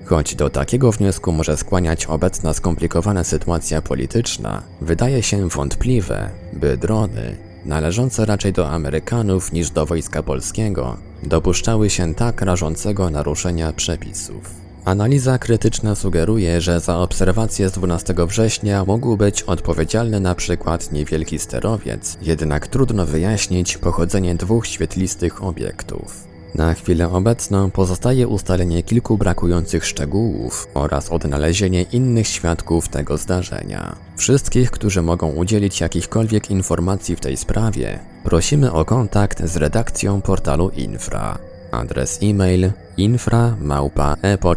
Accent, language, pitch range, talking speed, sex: native, Polish, 85-105 Hz, 115 wpm, male